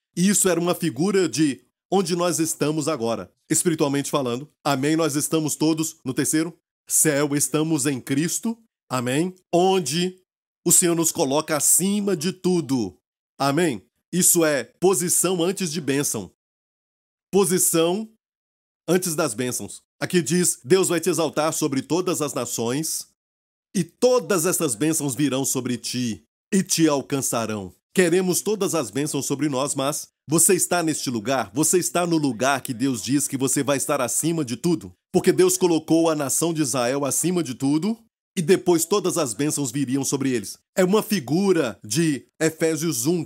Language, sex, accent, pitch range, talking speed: Portuguese, male, Brazilian, 140-175 Hz, 155 wpm